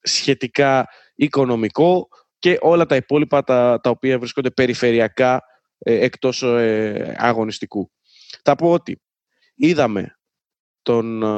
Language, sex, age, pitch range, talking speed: Greek, male, 20-39, 115-150 Hz, 105 wpm